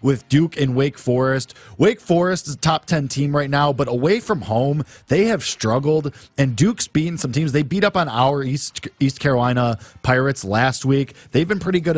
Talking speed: 205 wpm